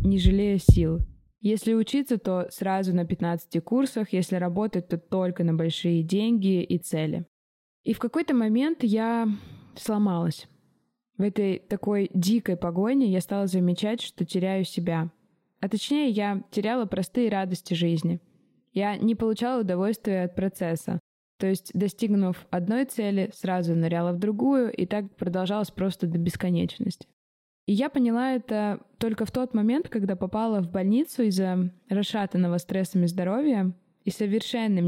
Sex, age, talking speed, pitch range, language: female, 20-39, 140 wpm, 180-220 Hz, Russian